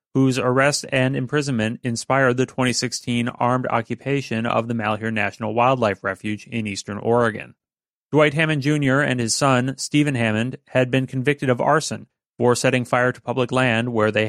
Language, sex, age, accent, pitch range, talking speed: English, male, 30-49, American, 115-135 Hz, 165 wpm